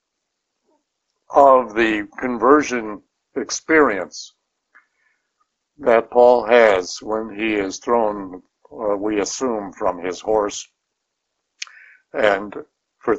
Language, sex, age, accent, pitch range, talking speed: English, male, 60-79, American, 105-125 Hz, 85 wpm